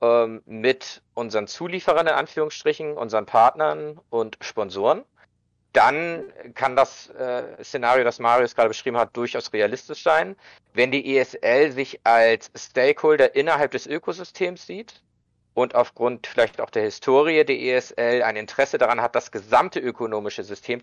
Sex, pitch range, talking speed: male, 115-150 Hz, 135 wpm